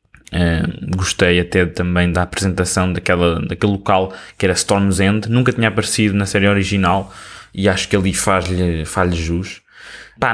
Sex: male